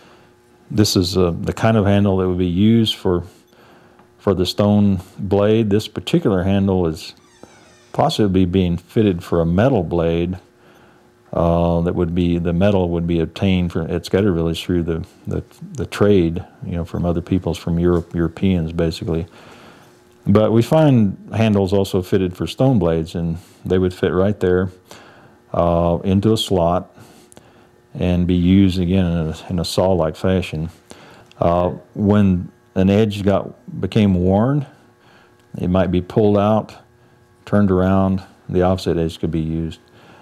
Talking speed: 150 wpm